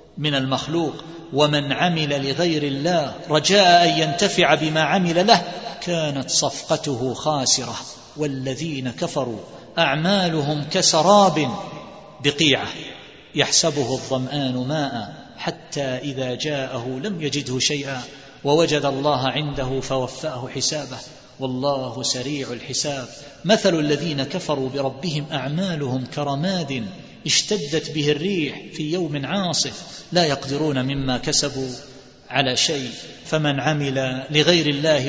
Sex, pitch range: male, 135-155 Hz